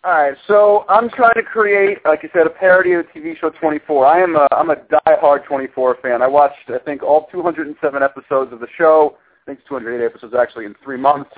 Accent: American